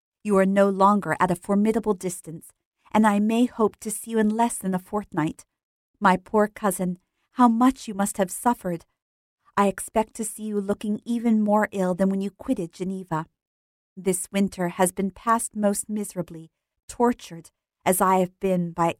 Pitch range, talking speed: 180-220 Hz, 175 wpm